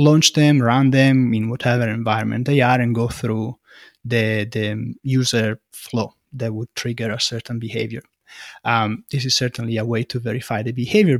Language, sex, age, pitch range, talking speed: English, male, 20-39, 115-140 Hz, 170 wpm